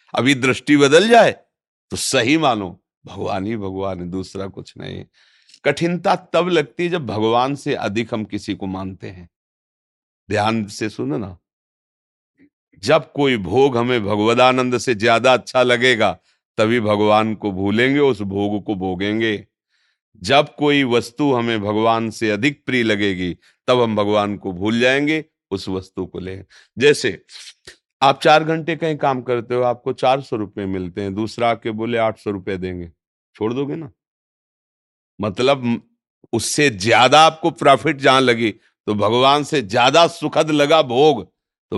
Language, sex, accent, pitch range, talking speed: Hindi, male, native, 105-140 Hz, 145 wpm